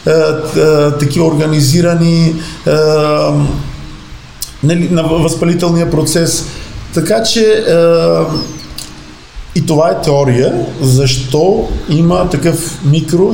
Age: 50-69